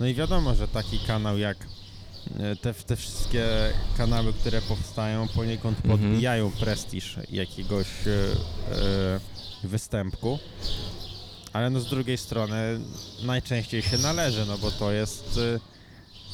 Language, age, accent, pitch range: Polish, 20-39, native, 95-120 Hz